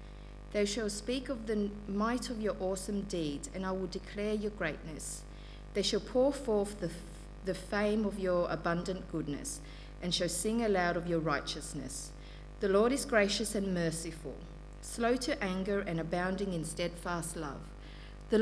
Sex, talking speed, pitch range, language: female, 160 wpm, 165-210 Hz, English